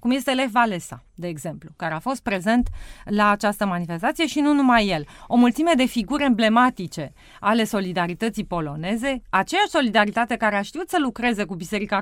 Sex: female